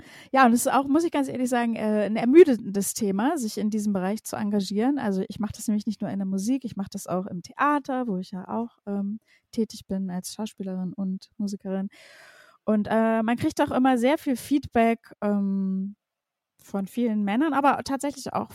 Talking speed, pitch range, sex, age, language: 200 wpm, 200-235 Hz, female, 20-39, German